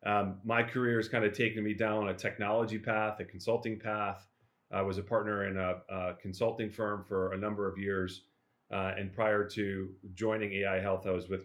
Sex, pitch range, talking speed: male, 95-105 Hz, 205 wpm